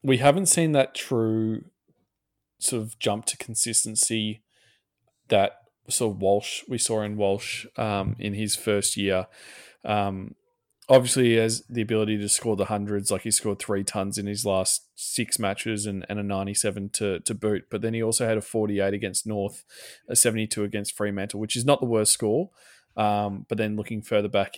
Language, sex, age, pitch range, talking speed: English, male, 20-39, 100-115 Hz, 185 wpm